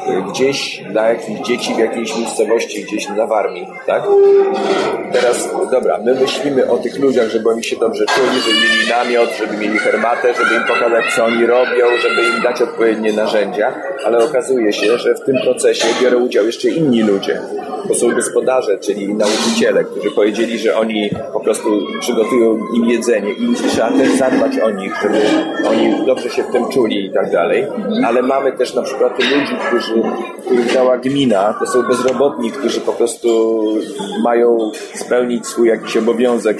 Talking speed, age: 170 wpm, 30-49